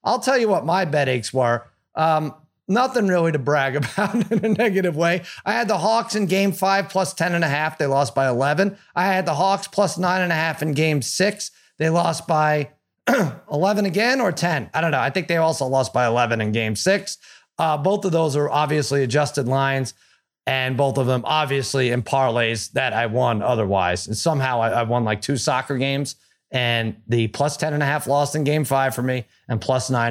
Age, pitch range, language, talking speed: 30-49, 130-180 Hz, English, 220 wpm